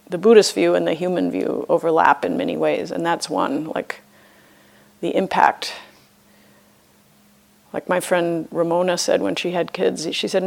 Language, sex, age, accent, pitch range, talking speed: English, female, 40-59, American, 165-190 Hz, 160 wpm